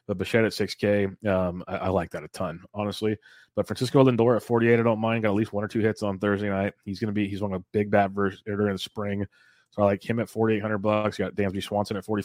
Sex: male